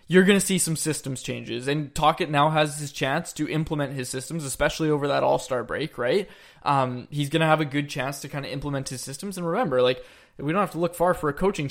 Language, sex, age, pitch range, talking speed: English, male, 20-39, 145-190 Hz, 250 wpm